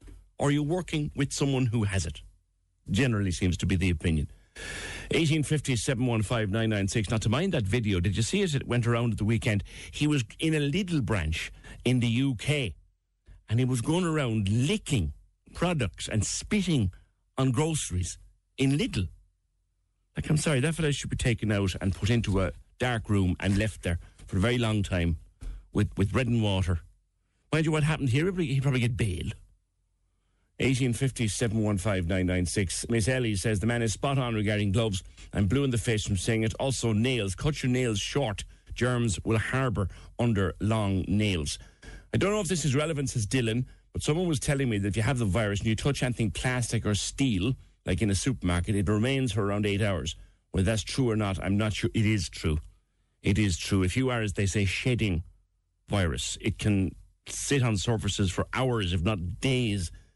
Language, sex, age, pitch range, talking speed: English, male, 60-79, 95-130 Hz, 195 wpm